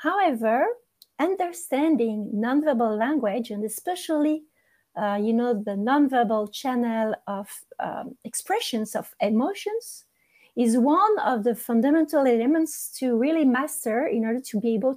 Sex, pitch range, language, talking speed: female, 225-310 Hz, English, 125 wpm